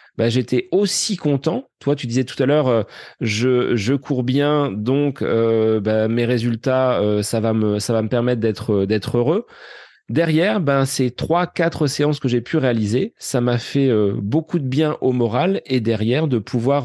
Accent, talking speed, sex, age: French, 190 wpm, male, 30-49